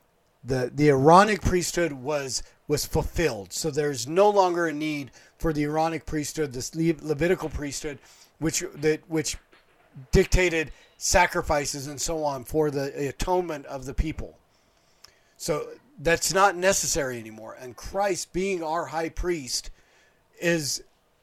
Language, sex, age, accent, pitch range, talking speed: English, male, 40-59, American, 145-175 Hz, 135 wpm